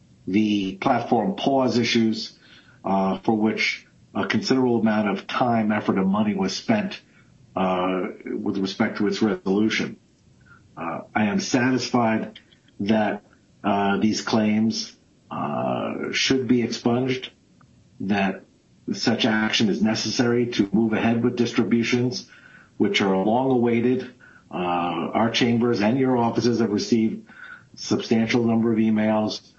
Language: English